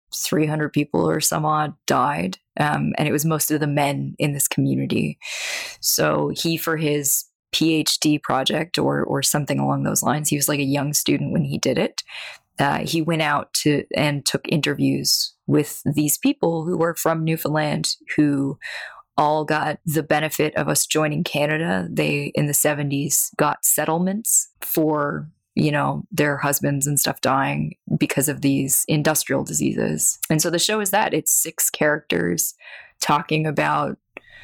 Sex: female